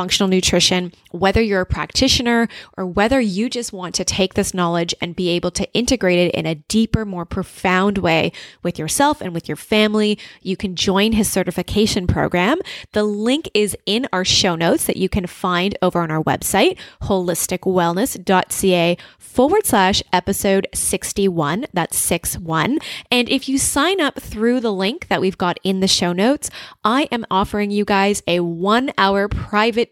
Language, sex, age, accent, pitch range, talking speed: English, female, 20-39, American, 180-220 Hz, 175 wpm